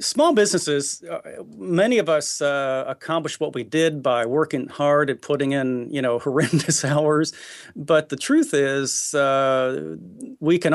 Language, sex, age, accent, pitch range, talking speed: English, male, 40-59, American, 130-160 Hz, 155 wpm